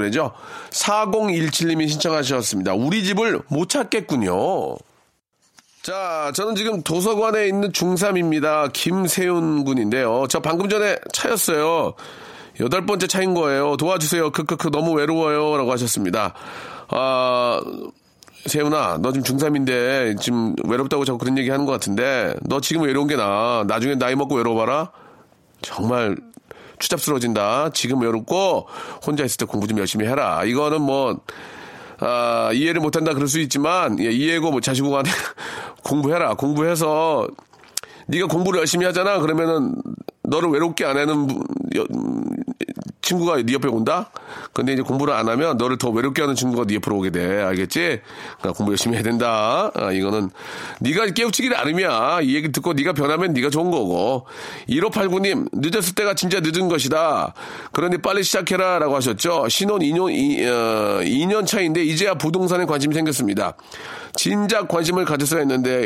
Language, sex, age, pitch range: Korean, male, 40-59, 130-190 Hz